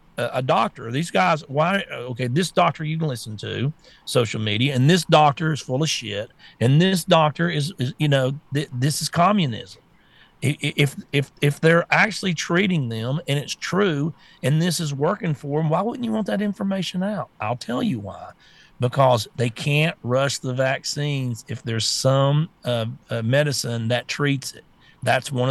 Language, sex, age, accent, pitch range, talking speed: English, male, 40-59, American, 120-160 Hz, 180 wpm